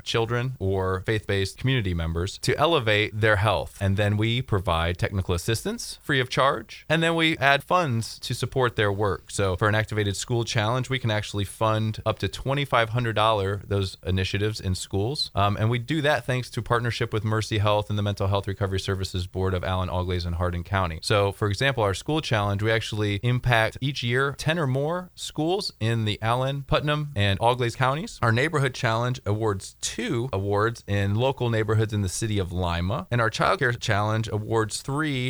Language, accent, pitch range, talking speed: English, American, 95-120 Hz, 190 wpm